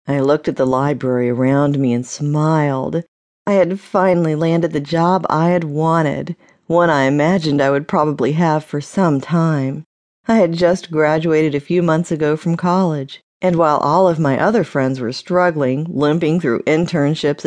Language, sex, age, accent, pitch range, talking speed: English, female, 50-69, American, 145-185 Hz, 170 wpm